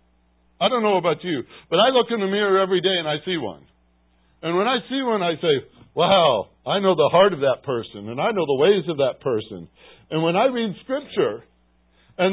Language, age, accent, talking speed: English, 60-79, American, 225 wpm